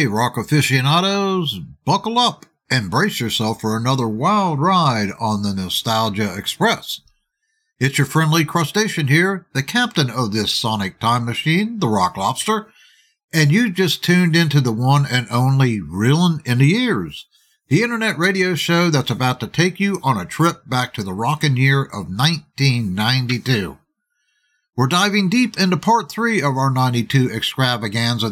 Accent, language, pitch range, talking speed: American, English, 125-190 Hz, 155 wpm